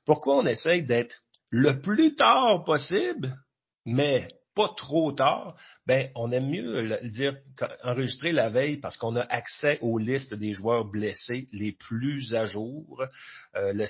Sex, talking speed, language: male, 155 wpm, French